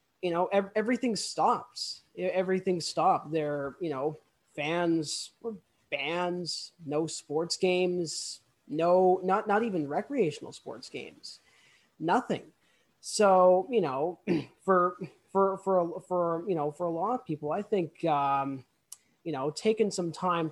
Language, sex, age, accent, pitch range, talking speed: English, male, 20-39, American, 155-185 Hz, 130 wpm